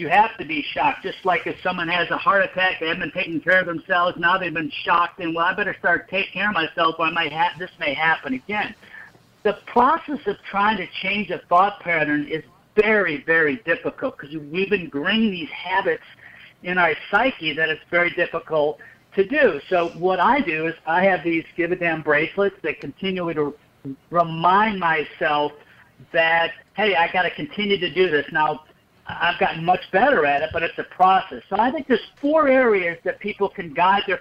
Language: English